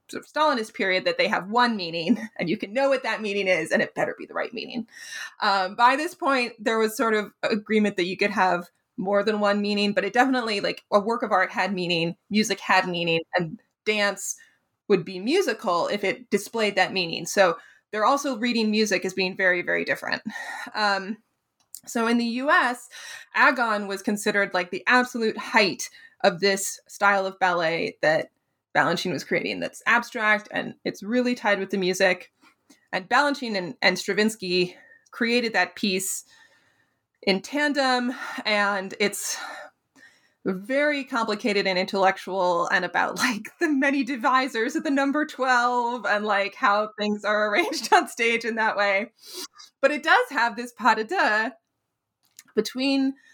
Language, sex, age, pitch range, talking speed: English, female, 20-39, 195-255 Hz, 170 wpm